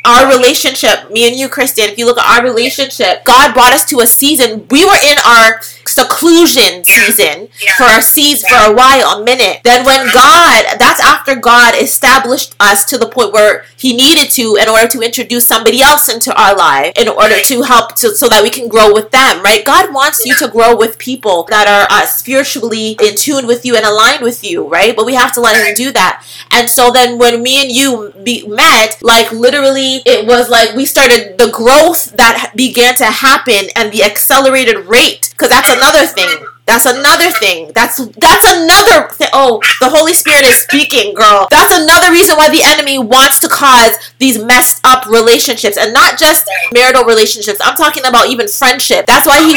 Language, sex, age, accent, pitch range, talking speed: English, female, 30-49, American, 230-290 Hz, 200 wpm